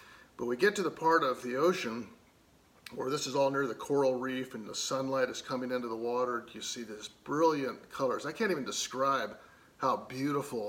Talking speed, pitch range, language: 200 wpm, 125-170 Hz, English